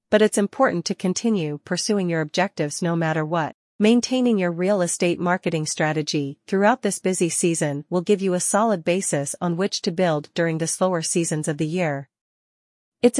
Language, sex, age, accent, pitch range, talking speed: English, female, 40-59, American, 160-200 Hz, 175 wpm